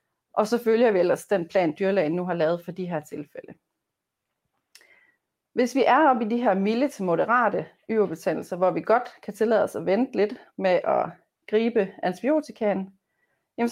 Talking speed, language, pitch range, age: 175 wpm, Danish, 185-245 Hz, 30-49